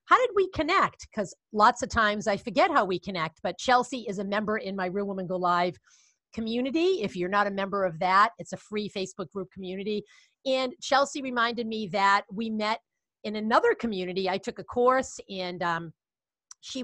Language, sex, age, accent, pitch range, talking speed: English, female, 40-59, American, 185-235 Hz, 195 wpm